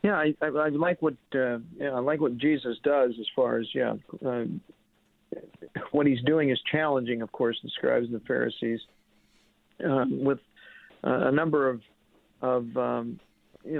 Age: 50-69